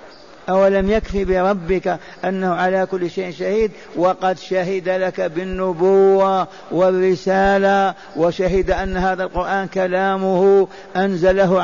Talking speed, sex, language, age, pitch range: 100 wpm, male, Arabic, 50-69, 190-205 Hz